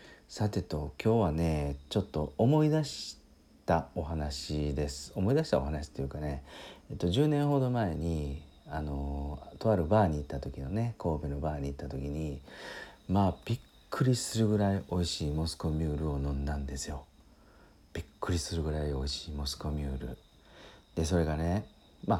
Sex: male